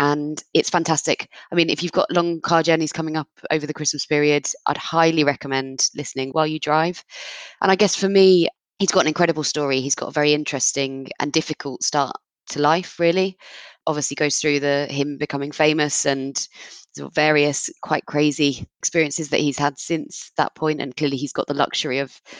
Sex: female